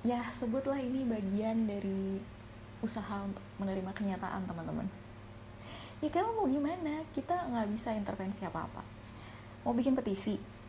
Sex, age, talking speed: female, 20-39, 125 wpm